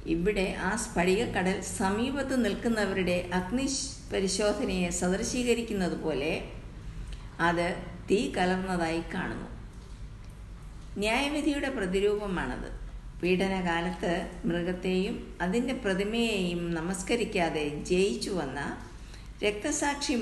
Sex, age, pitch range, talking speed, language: female, 50-69, 175-225 Hz, 65 wpm, Malayalam